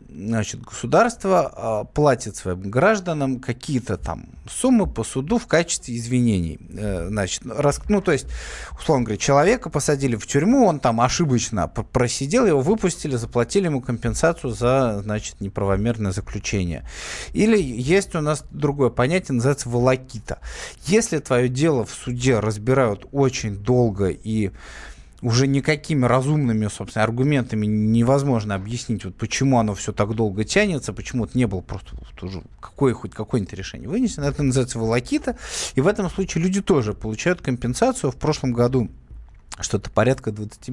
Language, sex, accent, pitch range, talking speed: Russian, male, native, 110-145 Hz, 135 wpm